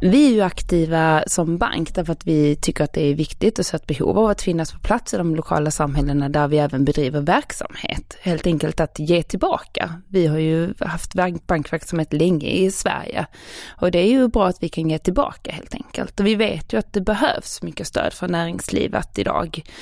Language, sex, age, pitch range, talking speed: Swedish, female, 20-39, 160-205 Hz, 210 wpm